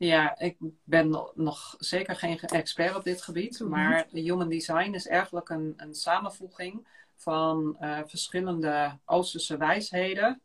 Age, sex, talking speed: 40-59, female, 130 wpm